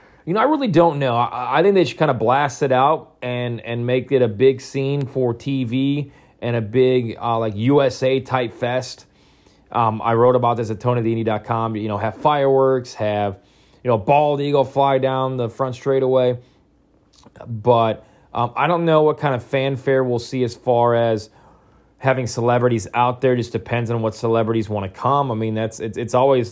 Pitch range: 105-130 Hz